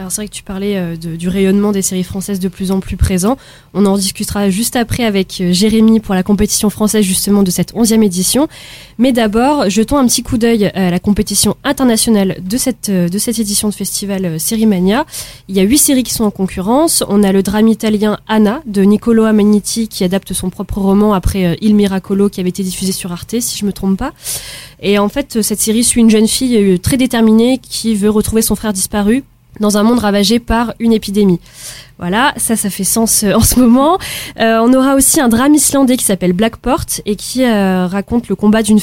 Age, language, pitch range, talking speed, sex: 20-39, French, 195-230 Hz, 215 wpm, female